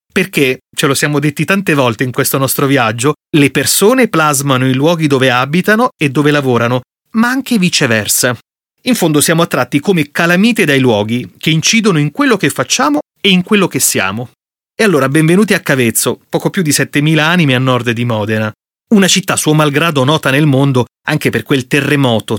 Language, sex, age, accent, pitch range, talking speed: Italian, male, 30-49, native, 125-165 Hz, 180 wpm